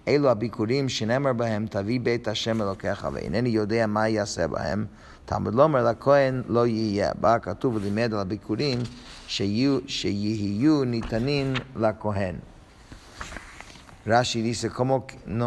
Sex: male